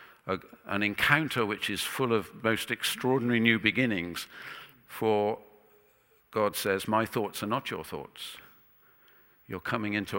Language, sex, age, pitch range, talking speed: English, male, 50-69, 85-105 Hz, 135 wpm